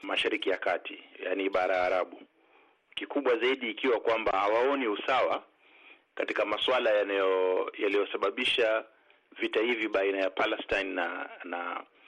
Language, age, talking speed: Swahili, 40-59, 115 wpm